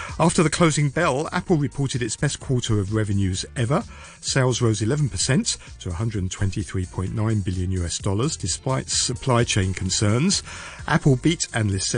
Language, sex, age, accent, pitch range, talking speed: English, male, 50-69, British, 100-135 Hz, 135 wpm